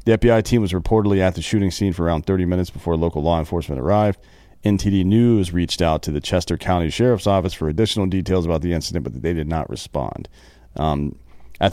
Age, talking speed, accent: 40-59, 210 wpm, American